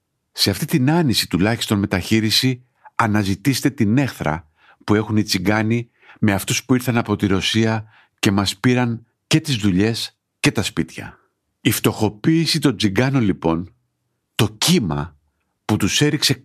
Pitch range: 95-115 Hz